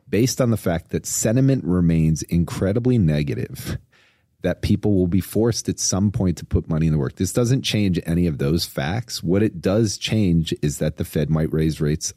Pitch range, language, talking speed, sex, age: 85-110 Hz, English, 200 wpm, male, 40-59